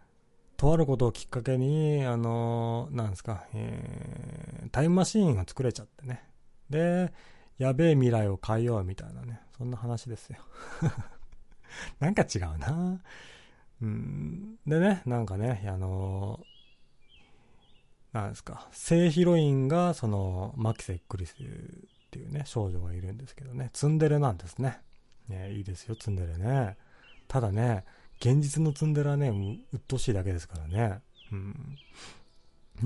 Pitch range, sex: 105-150 Hz, male